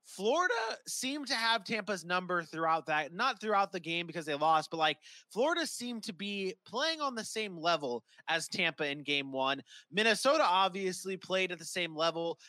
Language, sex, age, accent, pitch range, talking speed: English, male, 20-39, American, 160-225 Hz, 185 wpm